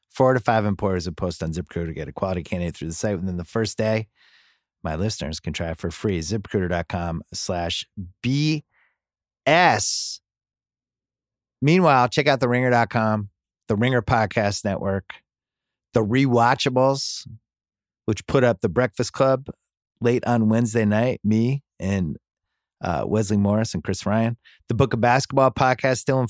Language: English